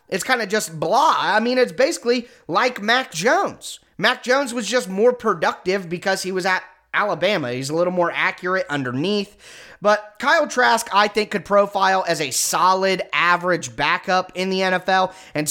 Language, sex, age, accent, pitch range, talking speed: English, male, 30-49, American, 170-215 Hz, 175 wpm